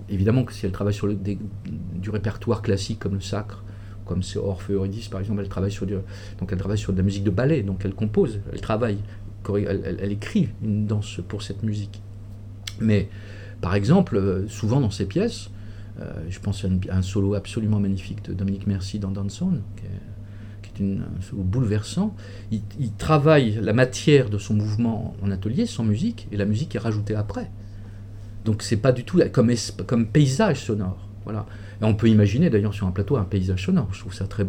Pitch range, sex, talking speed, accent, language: 100-110 Hz, male, 205 wpm, French, French